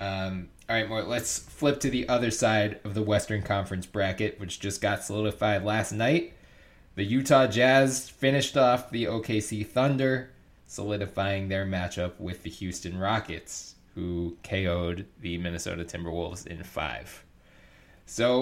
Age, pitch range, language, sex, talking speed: 20-39, 95-115 Hz, English, male, 140 wpm